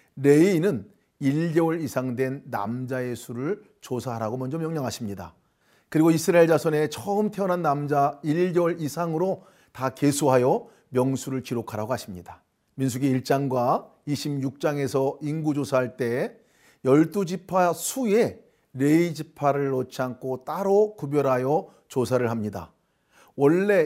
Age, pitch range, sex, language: 40-59, 130-165 Hz, male, Korean